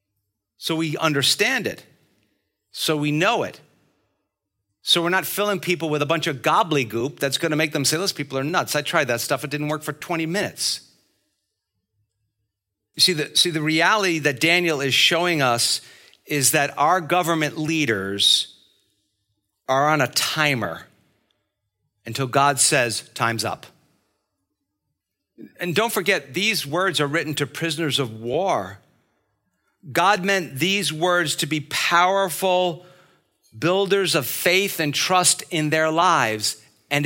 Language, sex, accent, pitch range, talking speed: English, male, American, 130-175 Hz, 145 wpm